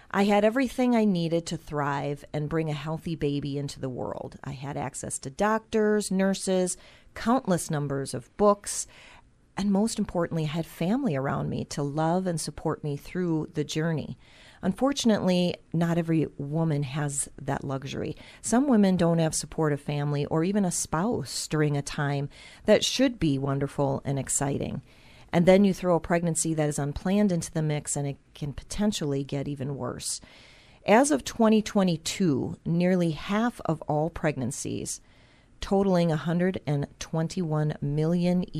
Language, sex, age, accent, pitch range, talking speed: English, female, 40-59, American, 145-180 Hz, 150 wpm